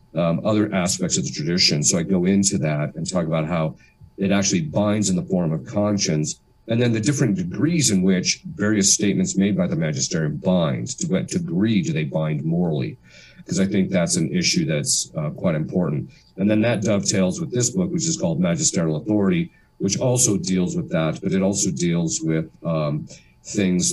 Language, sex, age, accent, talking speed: English, male, 50-69, American, 195 wpm